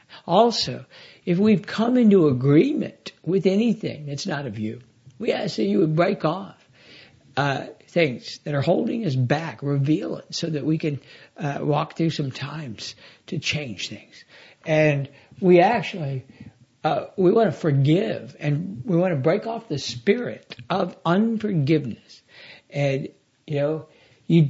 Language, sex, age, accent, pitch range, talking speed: English, male, 60-79, American, 140-190 Hz, 150 wpm